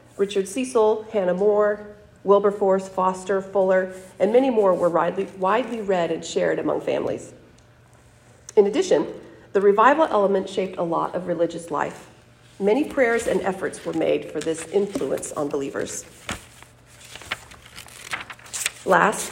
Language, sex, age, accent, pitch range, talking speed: English, female, 40-59, American, 165-210 Hz, 125 wpm